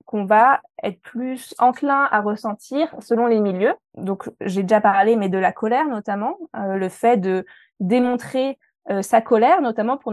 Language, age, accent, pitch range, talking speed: French, 20-39, French, 195-235 Hz, 170 wpm